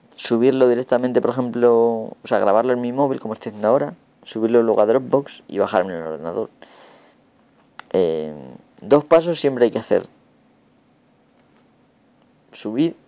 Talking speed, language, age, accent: 140 wpm, Spanish, 30-49, Spanish